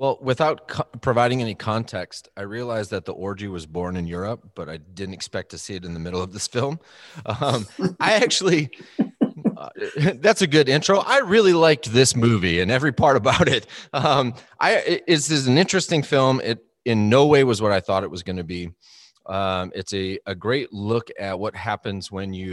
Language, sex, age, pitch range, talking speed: English, male, 30-49, 90-115 Hz, 210 wpm